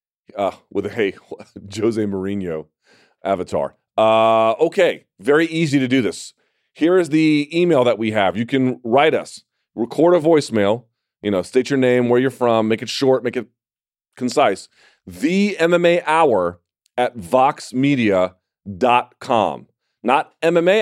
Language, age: English, 40-59